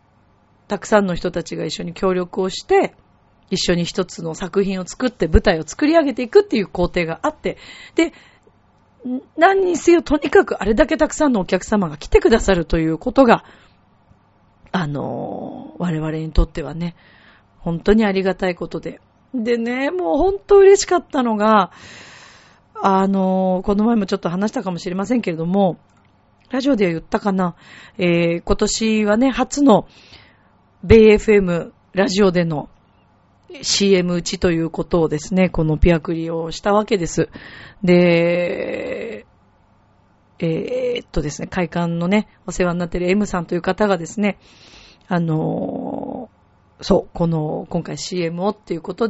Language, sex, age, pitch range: Japanese, female, 40-59, 170-220 Hz